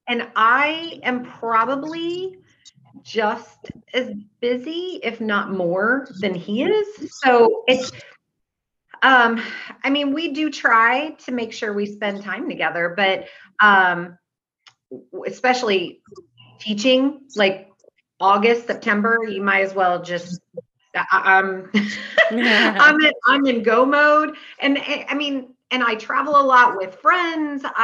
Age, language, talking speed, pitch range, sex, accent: 30-49, English, 125 wpm, 205-280 Hz, female, American